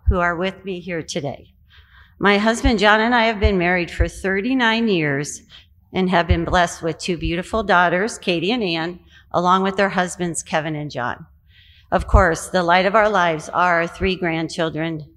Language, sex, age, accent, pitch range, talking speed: English, female, 40-59, American, 150-200 Hz, 180 wpm